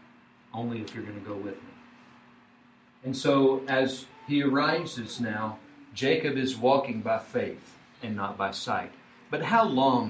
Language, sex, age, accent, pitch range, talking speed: English, male, 50-69, American, 125-165 Hz, 155 wpm